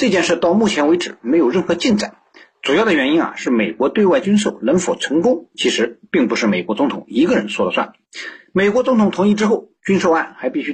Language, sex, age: Chinese, male, 50-69